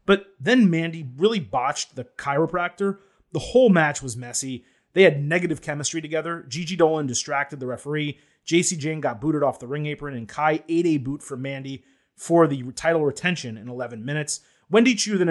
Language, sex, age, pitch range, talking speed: English, male, 30-49, 135-185 Hz, 185 wpm